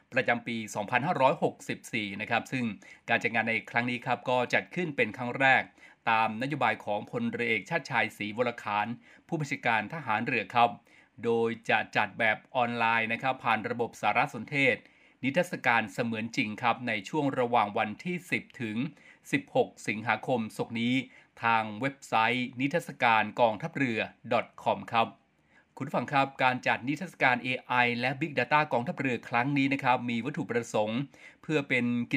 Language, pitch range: Thai, 115-140 Hz